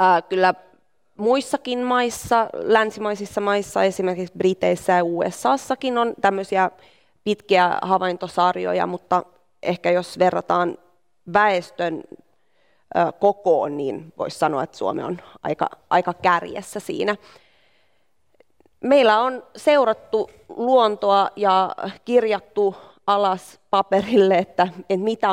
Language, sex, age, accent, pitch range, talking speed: Finnish, female, 20-39, native, 175-210 Hz, 95 wpm